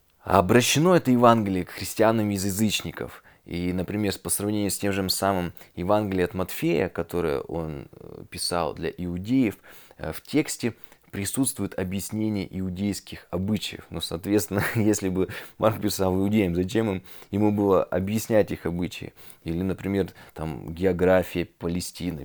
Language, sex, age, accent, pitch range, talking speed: Russian, male, 20-39, native, 90-105 Hz, 130 wpm